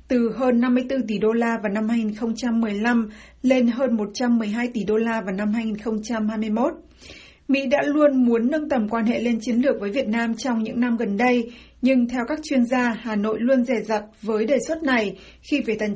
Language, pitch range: Vietnamese, 220-260 Hz